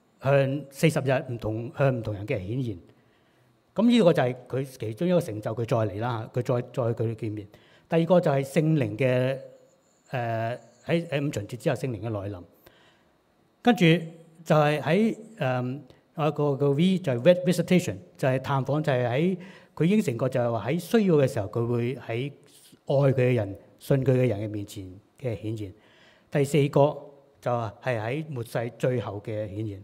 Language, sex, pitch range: Chinese, male, 115-160 Hz